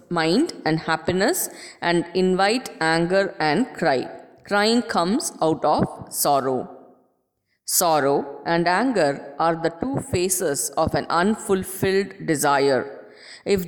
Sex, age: female, 20-39